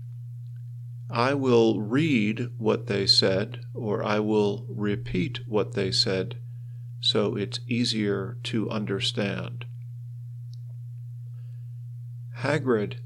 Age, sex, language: 50-69, male, Thai